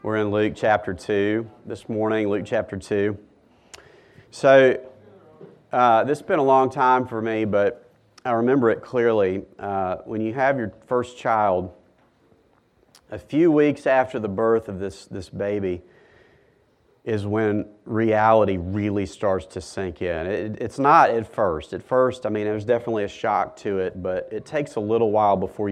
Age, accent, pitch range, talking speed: 40-59, American, 105-130 Hz, 170 wpm